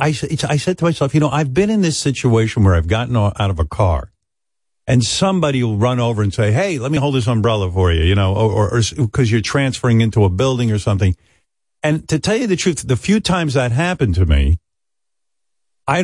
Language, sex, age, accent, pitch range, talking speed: English, male, 50-69, American, 105-150 Hz, 225 wpm